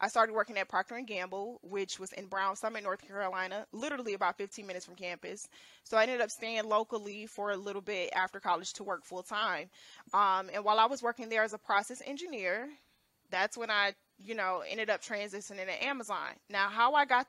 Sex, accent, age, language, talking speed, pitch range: female, American, 20-39, English, 210 wpm, 200-250 Hz